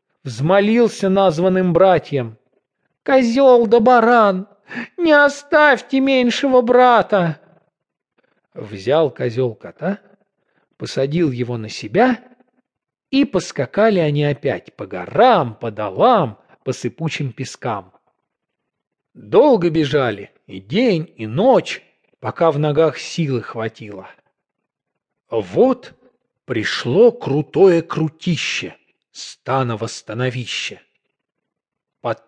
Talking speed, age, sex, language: 85 wpm, 40-59, male, English